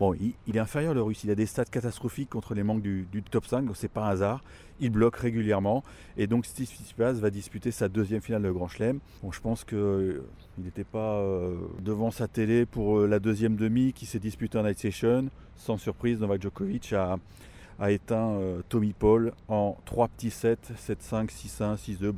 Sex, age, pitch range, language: male, 30-49, 105-130 Hz, French